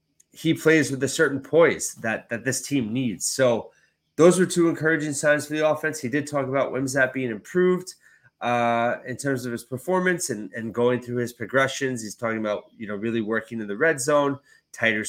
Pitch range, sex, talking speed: 120-145 Hz, male, 205 wpm